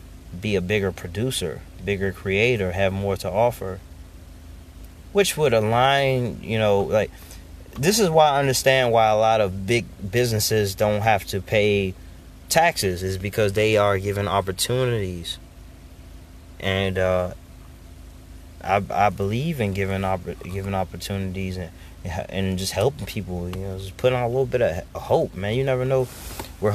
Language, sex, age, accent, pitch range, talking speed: English, male, 30-49, American, 90-115 Hz, 150 wpm